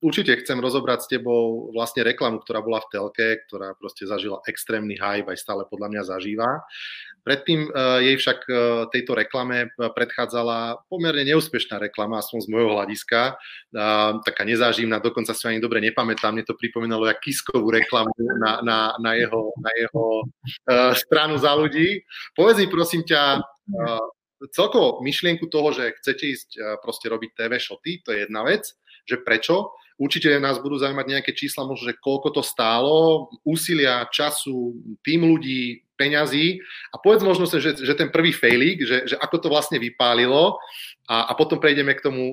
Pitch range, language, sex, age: 115-145 Hz, Slovak, male, 30-49